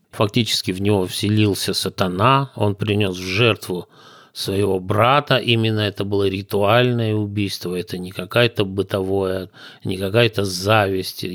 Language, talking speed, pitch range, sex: Russian, 115 wpm, 95-115 Hz, male